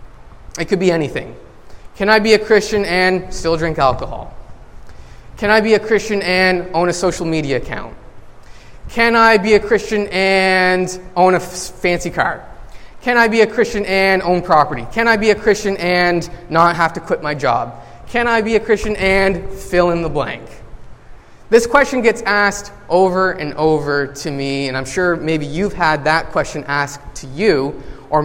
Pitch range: 160-210 Hz